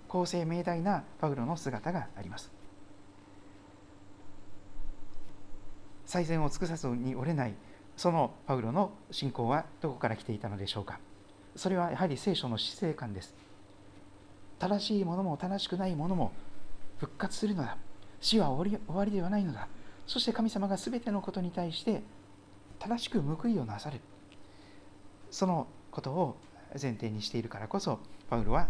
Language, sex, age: Japanese, male, 40-59